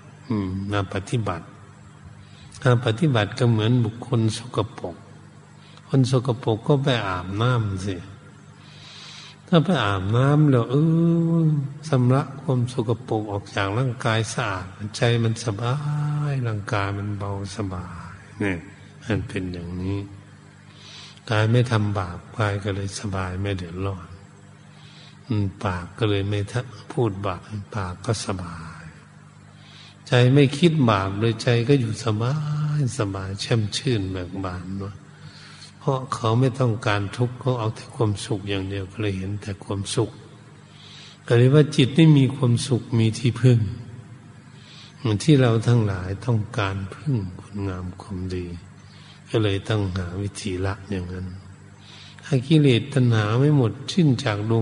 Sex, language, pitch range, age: male, Thai, 100-135 Hz, 60-79